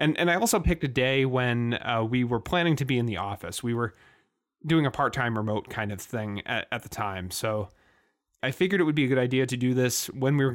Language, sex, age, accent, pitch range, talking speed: French, male, 30-49, American, 110-140 Hz, 255 wpm